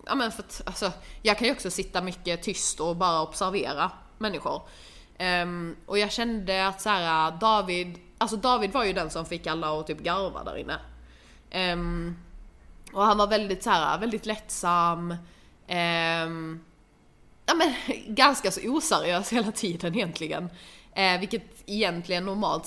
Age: 20-39